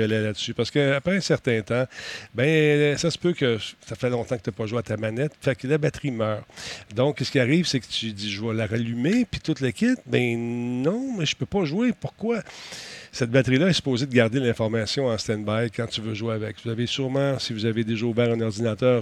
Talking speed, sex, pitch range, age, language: 235 wpm, male, 110-135 Hz, 40-59, French